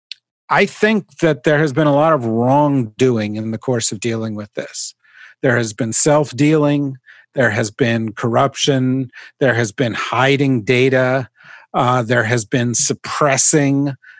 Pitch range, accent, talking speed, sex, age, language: 125-150 Hz, American, 150 wpm, male, 50-69, English